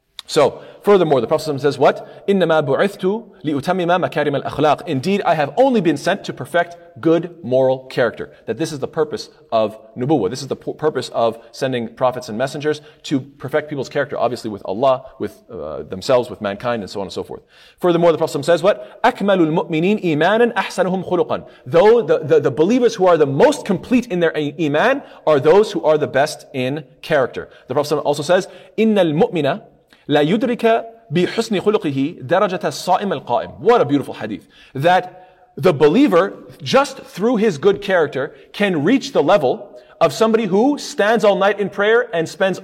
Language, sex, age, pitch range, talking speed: English, male, 30-49, 150-205 Hz, 150 wpm